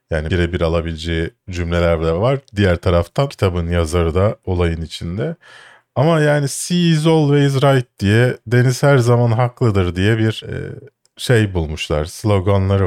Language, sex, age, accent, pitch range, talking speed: Turkish, male, 40-59, native, 90-135 Hz, 140 wpm